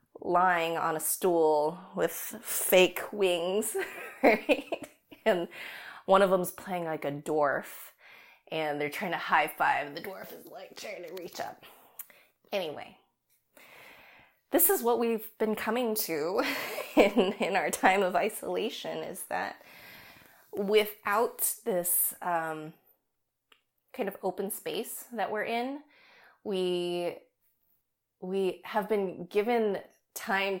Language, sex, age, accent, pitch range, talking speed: English, female, 20-39, American, 175-220 Hz, 120 wpm